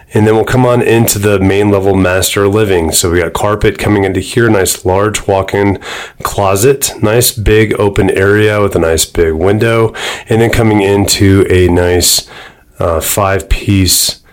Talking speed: 165 wpm